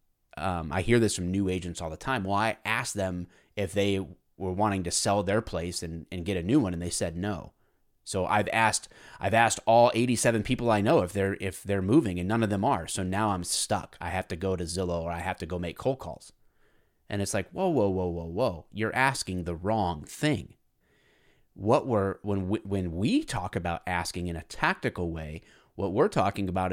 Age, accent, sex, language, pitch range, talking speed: 30-49, American, male, English, 90-120 Hz, 225 wpm